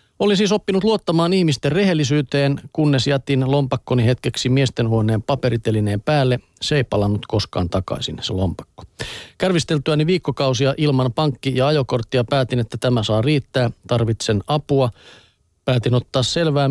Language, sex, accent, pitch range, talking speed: Finnish, male, native, 120-150 Hz, 130 wpm